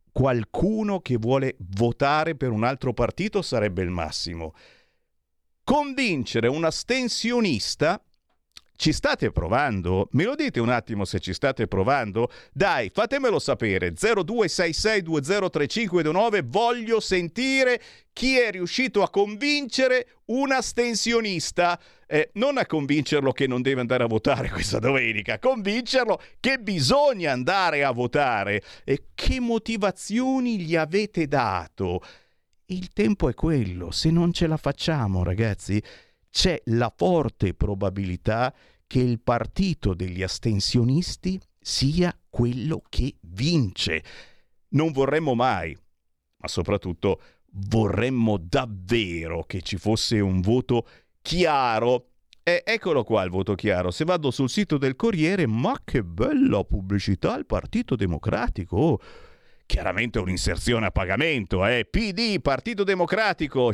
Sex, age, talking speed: male, 50-69, 120 wpm